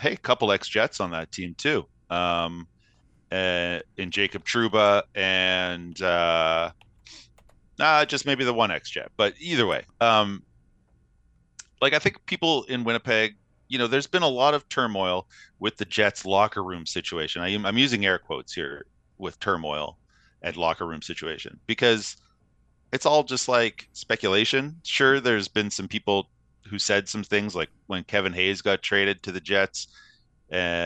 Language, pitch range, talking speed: English, 85-105 Hz, 160 wpm